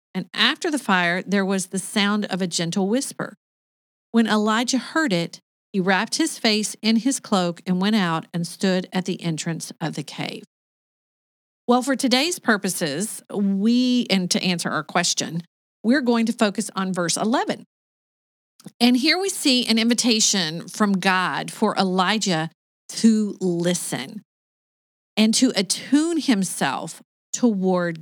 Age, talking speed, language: 40-59, 145 wpm, English